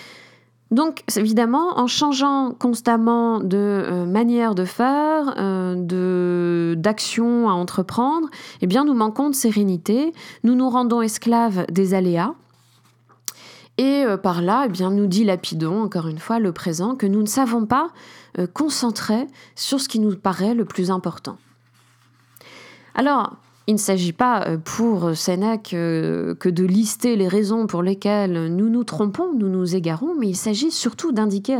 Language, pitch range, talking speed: French, 180-240 Hz, 145 wpm